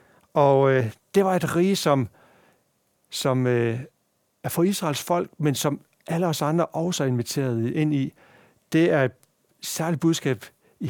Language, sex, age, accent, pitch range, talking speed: Danish, male, 60-79, native, 130-175 Hz, 160 wpm